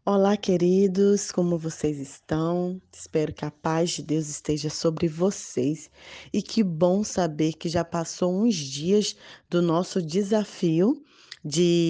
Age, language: 20-39, Portuguese